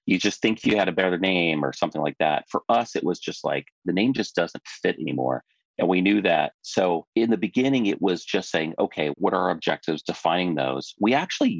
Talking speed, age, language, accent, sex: 235 wpm, 30-49, English, American, male